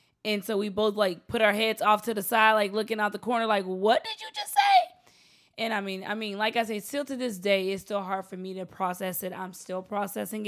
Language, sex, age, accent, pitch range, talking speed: English, female, 20-39, American, 170-205 Hz, 265 wpm